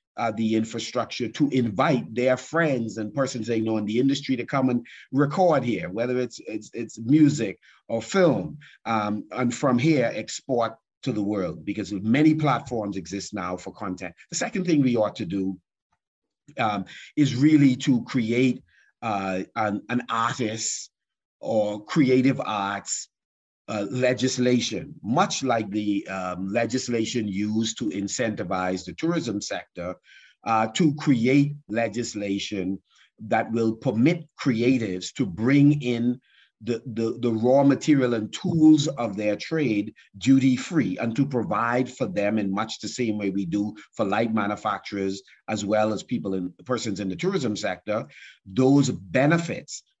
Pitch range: 105-135 Hz